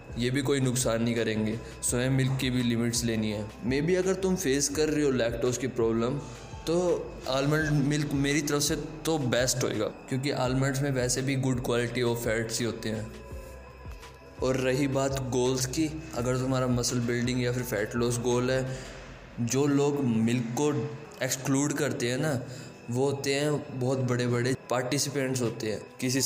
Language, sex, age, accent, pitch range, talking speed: Hindi, male, 20-39, native, 120-140 Hz, 180 wpm